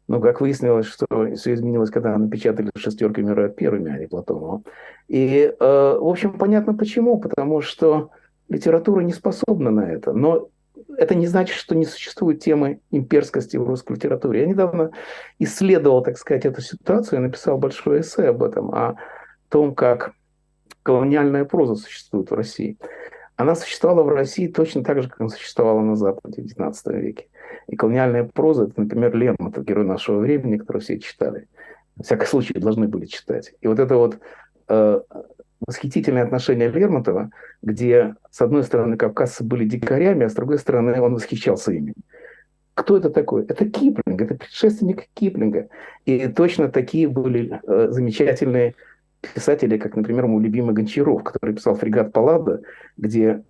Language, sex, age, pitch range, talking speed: Russian, male, 50-69, 115-175 Hz, 155 wpm